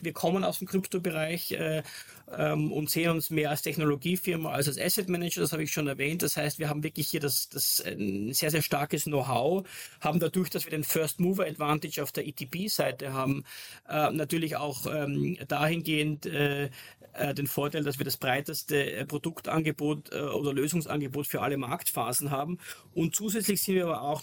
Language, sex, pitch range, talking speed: German, male, 140-165 Hz, 175 wpm